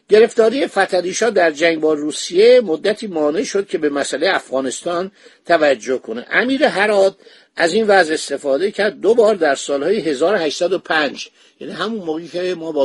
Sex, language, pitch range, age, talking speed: male, Persian, 150-215 Hz, 50-69, 155 wpm